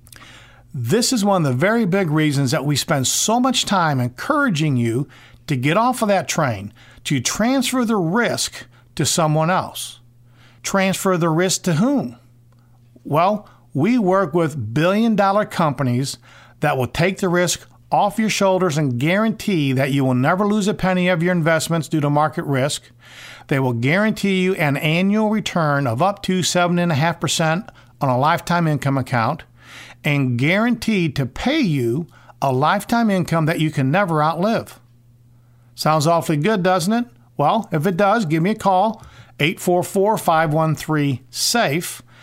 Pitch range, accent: 130-190 Hz, American